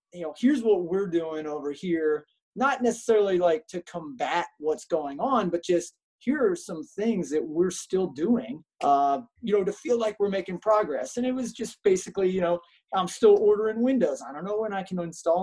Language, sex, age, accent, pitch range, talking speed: English, male, 30-49, American, 170-225 Hz, 205 wpm